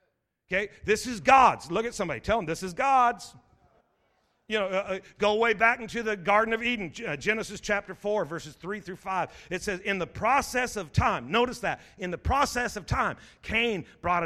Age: 50-69